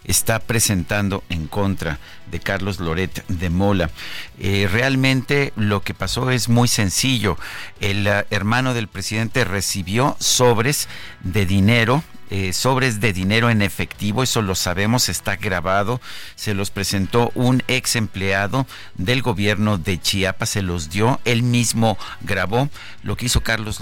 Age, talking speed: 50-69, 140 wpm